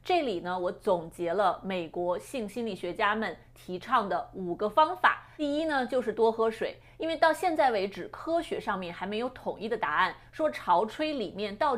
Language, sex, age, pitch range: Chinese, female, 30-49, 190-290 Hz